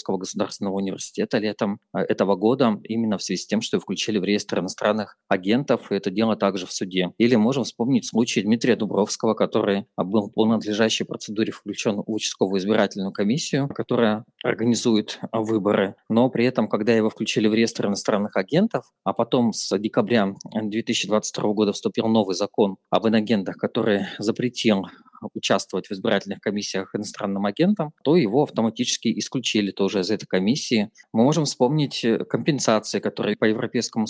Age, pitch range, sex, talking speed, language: 20-39, 100-120 Hz, male, 150 wpm, Russian